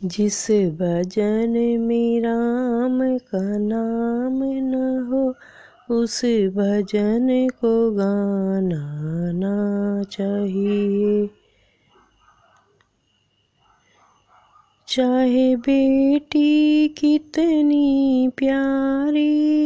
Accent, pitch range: native, 205-270 Hz